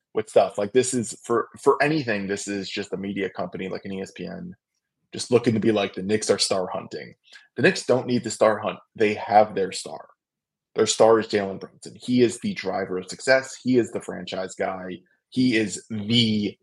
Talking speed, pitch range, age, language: 205 wpm, 100-135 Hz, 20-39, English